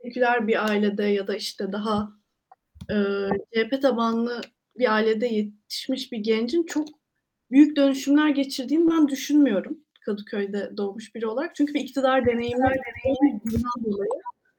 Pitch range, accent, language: 210-265 Hz, native, Turkish